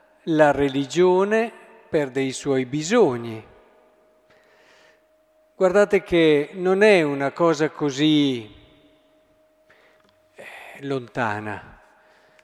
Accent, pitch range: native, 130-185 Hz